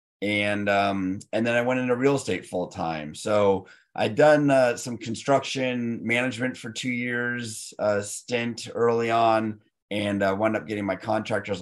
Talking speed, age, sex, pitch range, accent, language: 165 wpm, 30-49, male, 95-115 Hz, American, English